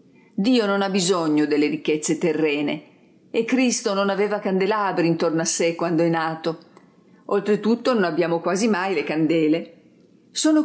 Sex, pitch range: female, 170-235 Hz